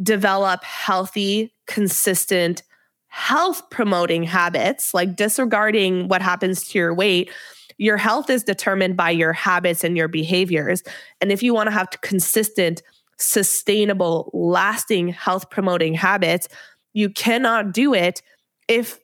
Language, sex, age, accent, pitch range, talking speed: English, female, 20-39, American, 180-210 Hz, 125 wpm